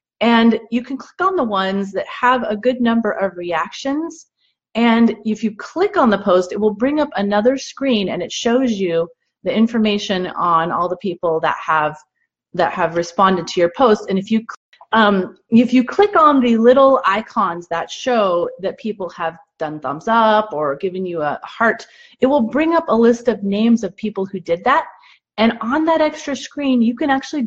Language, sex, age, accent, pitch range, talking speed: English, female, 30-49, American, 185-245 Hz, 195 wpm